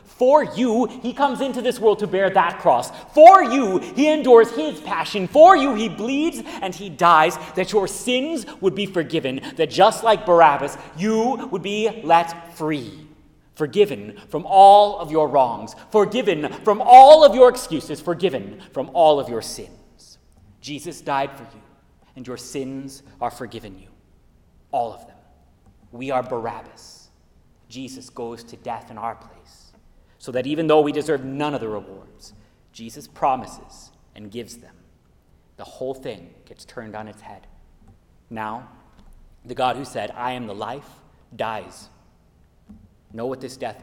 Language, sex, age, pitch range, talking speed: English, male, 30-49, 115-190 Hz, 160 wpm